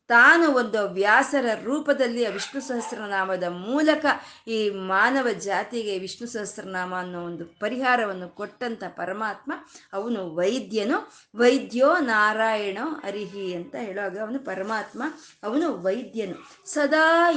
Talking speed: 100 wpm